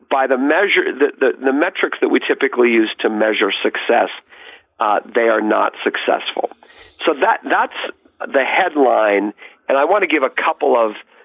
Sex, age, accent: male, 50-69, American